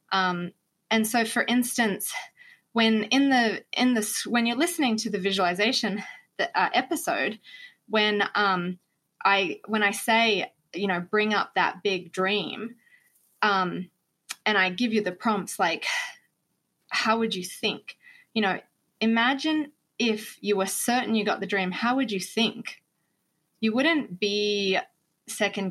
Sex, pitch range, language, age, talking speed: female, 190-240 Hz, English, 20-39, 145 wpm